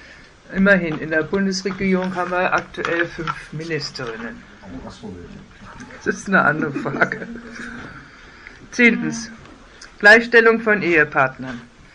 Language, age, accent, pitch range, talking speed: German, 60-79, German, 155-210 Hz, 90 wpm